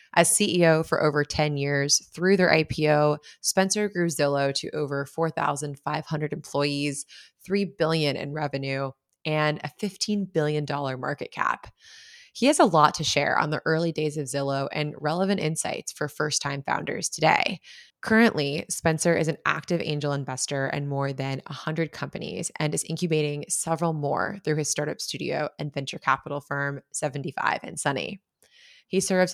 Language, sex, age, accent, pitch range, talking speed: English, female, 20-39, American, 140-170 Hz, 155 wpm